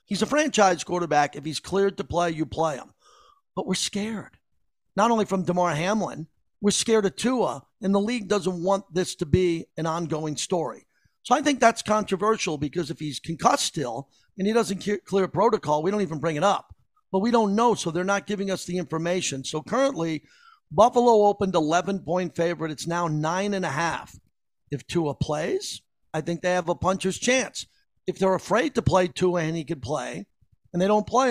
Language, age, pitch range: English, 50-69, 170-210 Hz